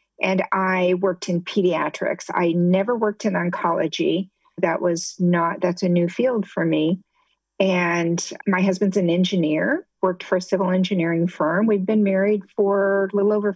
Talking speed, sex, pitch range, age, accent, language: 165 wpm, female, 175-210 Hz, 50-69, American, English